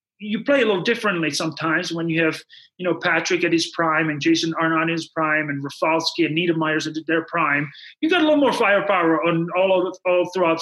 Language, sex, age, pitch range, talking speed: English, male, 30-49, 160-195 Hz, 220 wpm